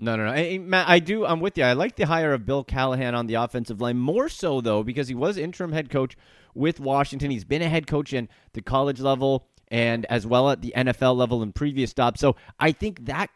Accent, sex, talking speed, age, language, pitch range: American, male, 245 wpm, 30-49, English, 135-170 Hz